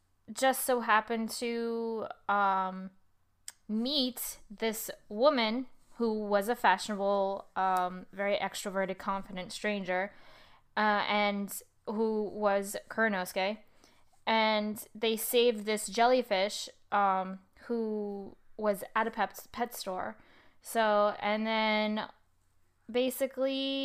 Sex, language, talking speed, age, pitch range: female, English, 100 wpm, 10-29, 205-240 Hz